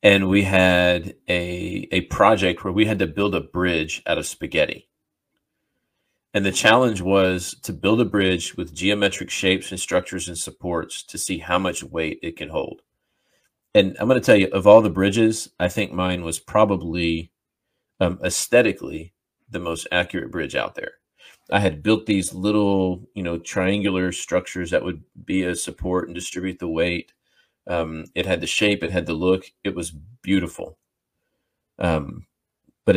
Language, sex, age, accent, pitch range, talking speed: English, male, 40-59, American, 85-100 Hz, 170 wpm